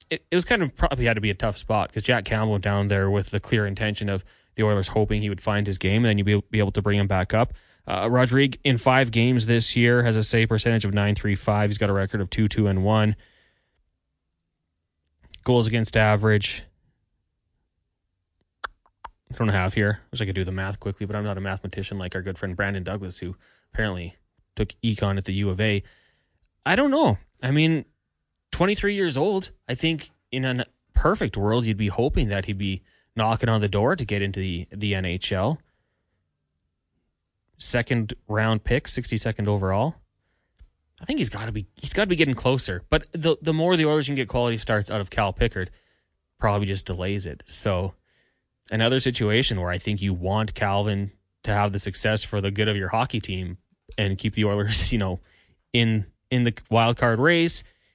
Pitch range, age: 95-115 Hz, 20-39